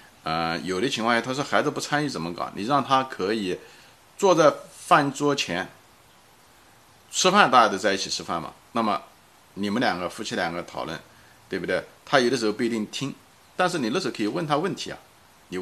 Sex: male